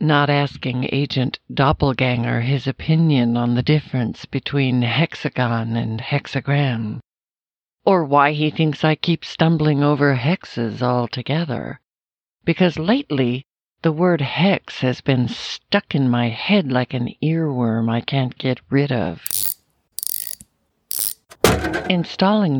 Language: English